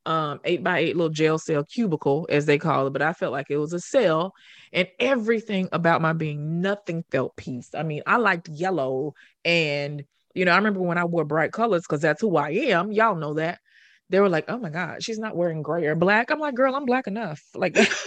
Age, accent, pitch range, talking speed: 20-39, American, 160-225 Hz, 235 wpm